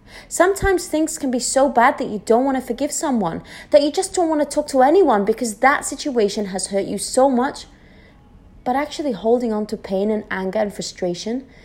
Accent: British